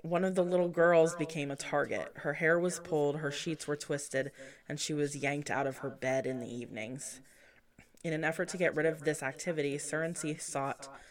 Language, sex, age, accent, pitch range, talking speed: English, female, 20-39, American, 130-160 Hz, 205 wpm